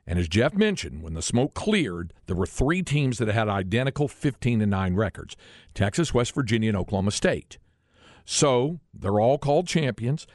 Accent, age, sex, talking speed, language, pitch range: American, 50-69, male, 160 wpm, English, 95-135 Hz